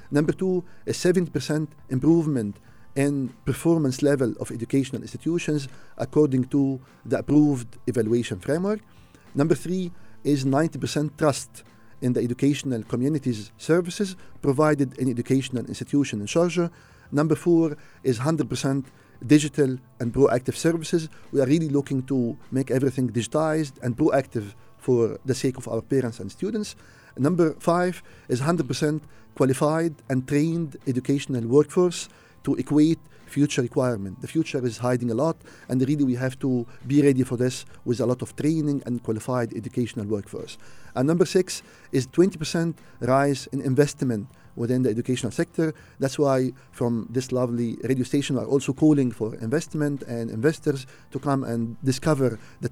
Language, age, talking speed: English, 40-59, 145 wpm